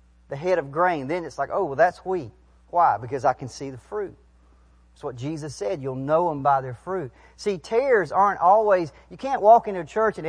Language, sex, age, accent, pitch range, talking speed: English, male, 40-59, American, 135-175 Hz, 225 wpm